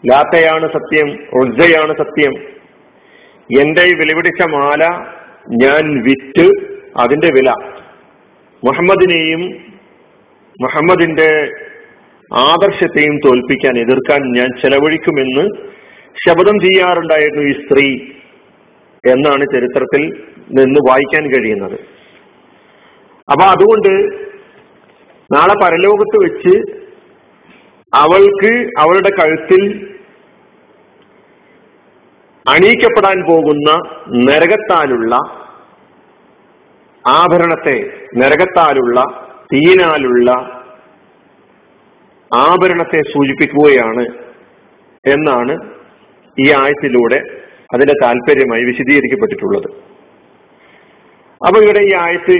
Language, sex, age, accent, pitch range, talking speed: Malayalam, male, 50-69, native, 145-230 Hz, 60 wpm